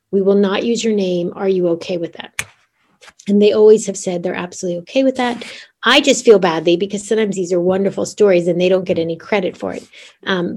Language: English